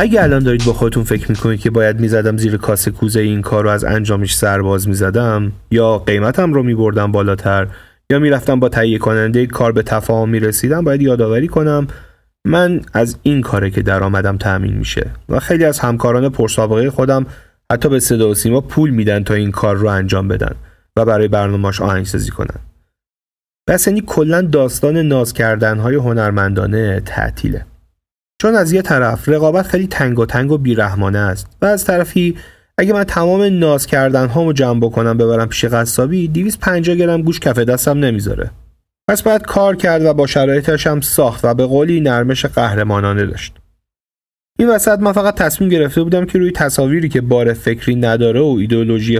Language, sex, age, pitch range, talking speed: Persian, male, 30-49, 105-150 Hz, 175 wpm